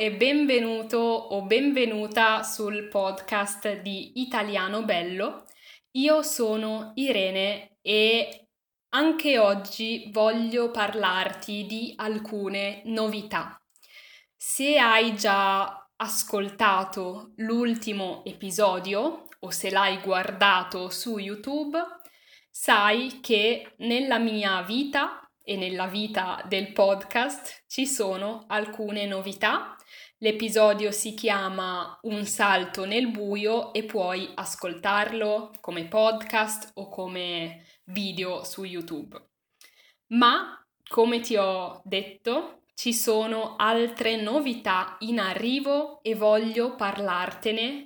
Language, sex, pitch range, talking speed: Italian, female, 195-235 Hz, 95 wpm